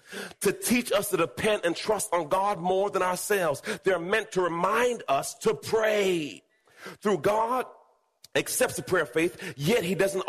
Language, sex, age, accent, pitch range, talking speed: English, male, 40-59, American, 145-230 Hz, 170 wpm